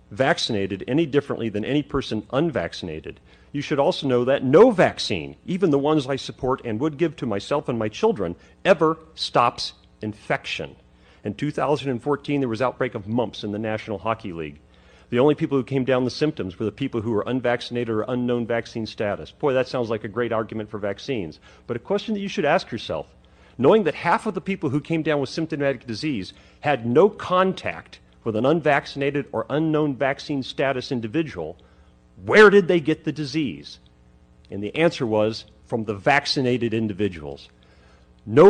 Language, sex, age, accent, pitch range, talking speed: English, male, 40-59, American, 110-155 Hz, 180 wpm